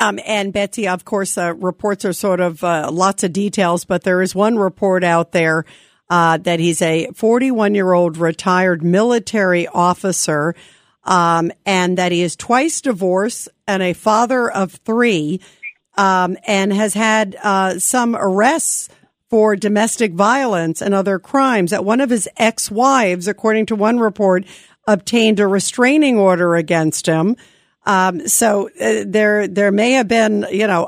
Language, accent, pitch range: English, American, 190-240 Hz